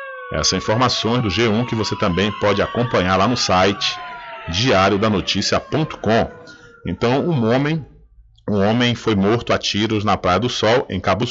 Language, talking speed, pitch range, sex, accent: Portuguese, 155 wpm, 105-130 Hz, male, Brazilian